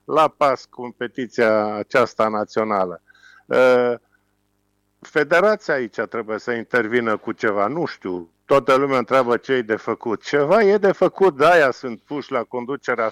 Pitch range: 115-160 Hz